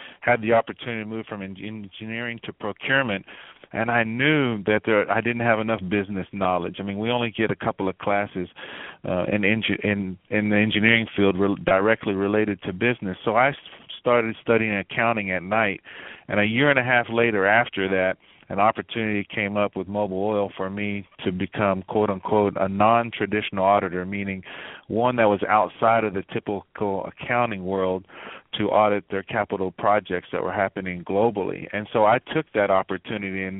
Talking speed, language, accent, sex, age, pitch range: 180 wpm, English, American, male, 40-59, 95-115 Hz